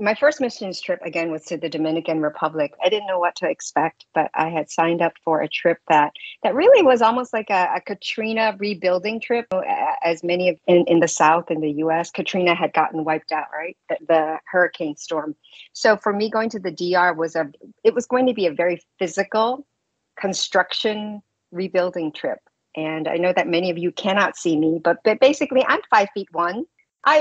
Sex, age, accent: female, 50-69, American